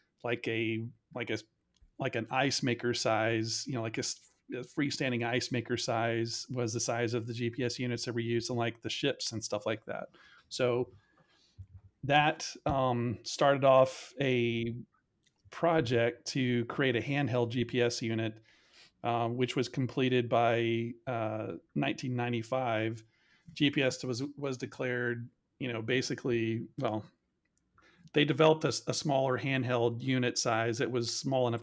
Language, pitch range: English, 115-130 Hz